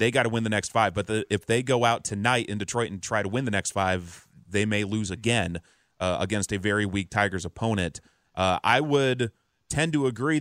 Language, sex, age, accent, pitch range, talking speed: English, male, 30-49, American, 105-125 Hz, 230 wpm